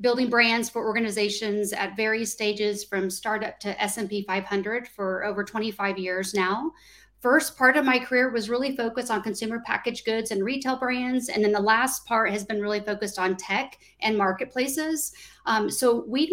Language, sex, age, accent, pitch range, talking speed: English, female, 40-59, American, 210-255 Hz, 175 wpm